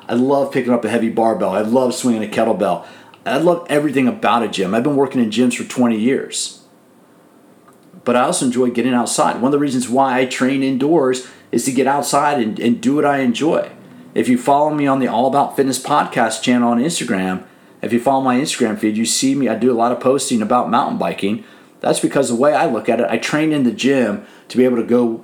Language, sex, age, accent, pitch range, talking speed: English, male, 40-59, American, 115-140 Hz, 235 wpm